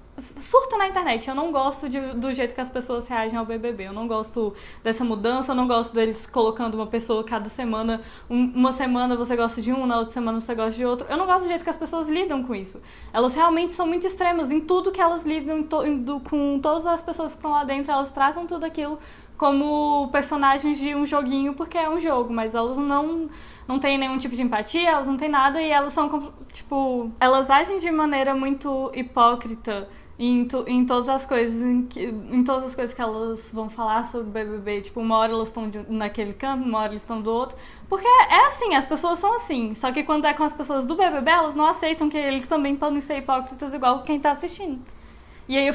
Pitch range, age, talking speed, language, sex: 240-315 Hz, 10-29, 230 wpm, Portuguese, female